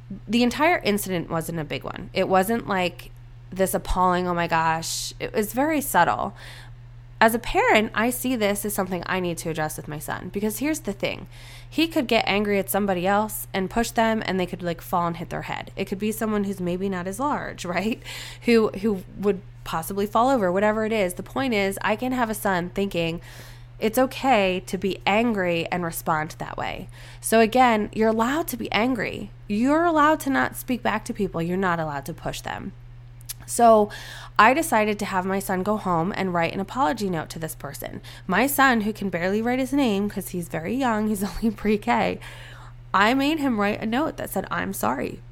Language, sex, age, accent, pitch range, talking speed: English, female, 20-39, American, 165-220 Hz, 210 wpm